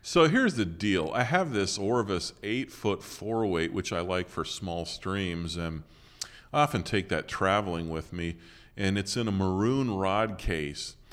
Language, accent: English, American